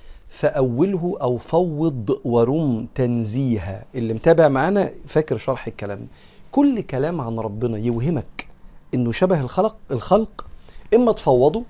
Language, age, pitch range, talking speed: Arabic, 40-59, 125-160 Hz, 115 wpm